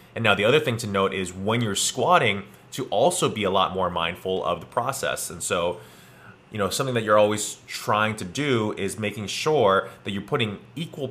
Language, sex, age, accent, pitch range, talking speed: English, male, 20-39, American, 95-115 Hz, 210 wpm